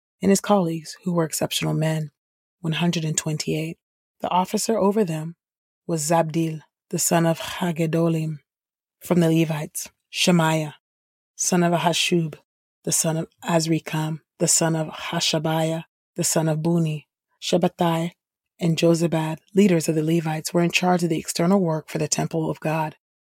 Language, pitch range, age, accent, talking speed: English, 155-170 Hz, 30-49, American, 145 wpm